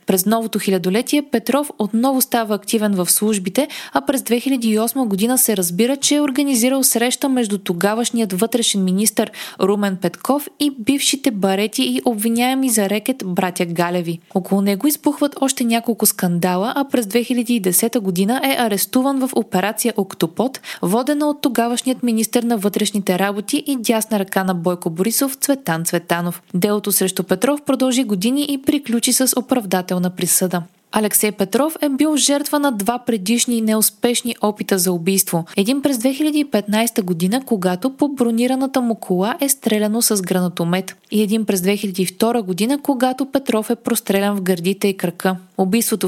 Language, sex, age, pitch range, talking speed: Bulgarian, female, 20-39, 195-260 Hz, 150 wpm